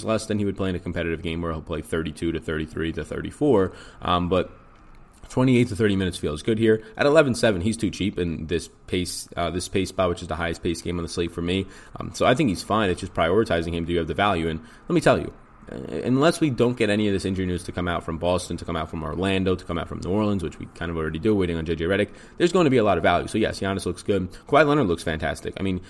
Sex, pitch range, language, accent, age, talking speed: male, 85-100 Hz, English, American, 20-39, 285 wpm